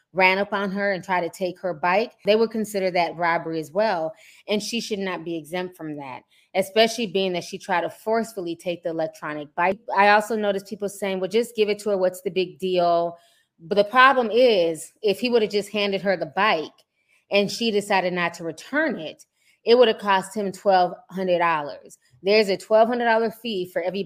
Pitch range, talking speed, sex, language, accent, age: 175-210 Hz, 205 wpm, female, English, American, 20-39